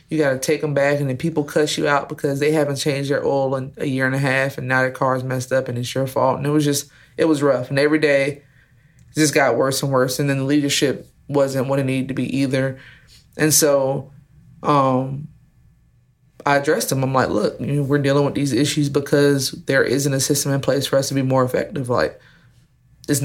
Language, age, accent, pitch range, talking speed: English, 20-39, American, 130-145 Hz, 235 wpm